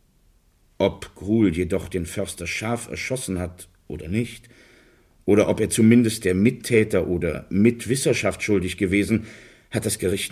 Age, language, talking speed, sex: 50-69, German, 135 wpm, male